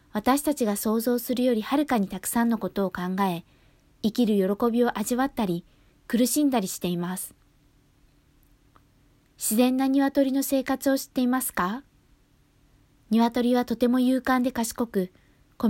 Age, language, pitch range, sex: 20-39, Japanese, 195-250 Hz, female